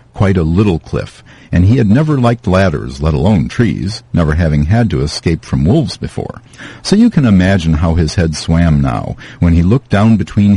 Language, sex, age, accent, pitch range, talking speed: English, male, 50-69, American, 80-110 Hz, 200 wpm